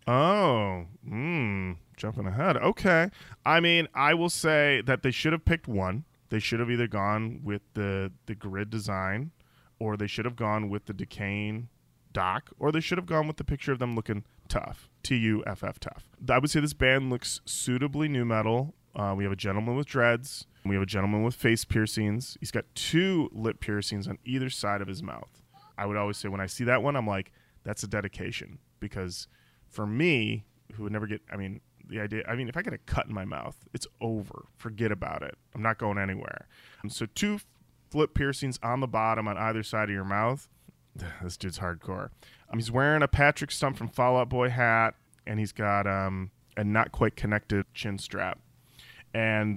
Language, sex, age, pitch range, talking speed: English, male, 20-39, 100-130 Hz, 200 wpm